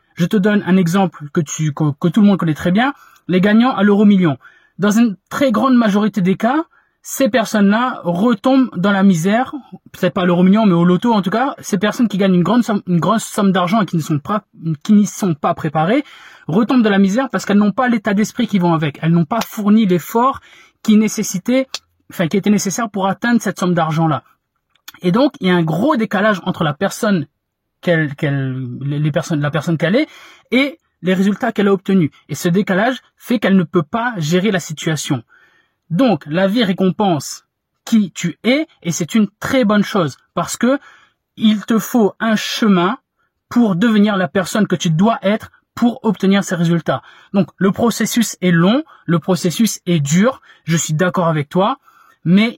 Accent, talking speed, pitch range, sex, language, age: French, 195 wpm, 175-225 Hz, male, French, 20-39